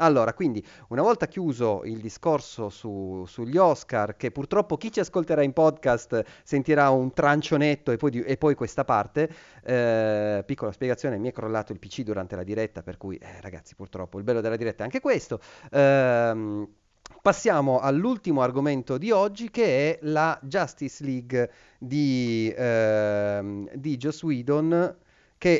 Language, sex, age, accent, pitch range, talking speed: Italian, male, 30-49, native, 110-155 Hz, 150 wpm